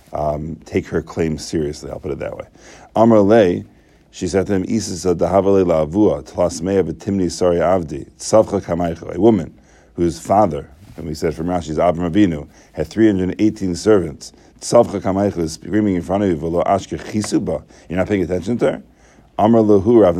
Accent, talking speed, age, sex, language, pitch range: American, 185 wpm, 50-69, male, English, 80-100 Hz